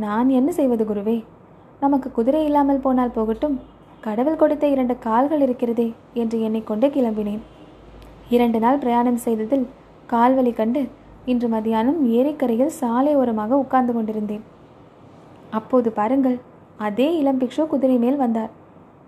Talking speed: 115 wpm